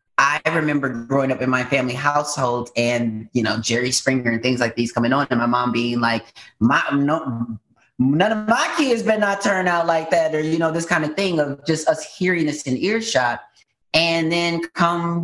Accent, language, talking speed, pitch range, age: American, English, 210 wpm, 130-165 Hz, 30-49